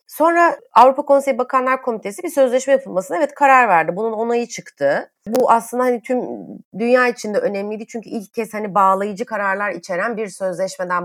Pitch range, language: 170-240 Hz, Turkish